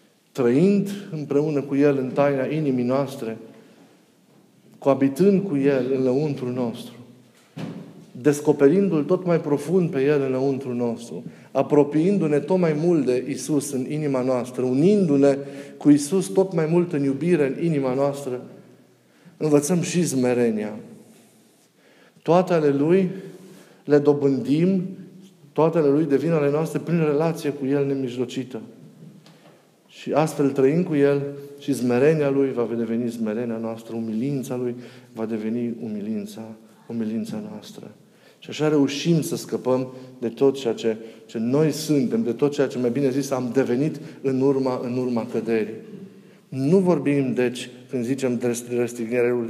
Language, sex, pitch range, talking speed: Romanian, male, 125-155 Hz, 140 wpm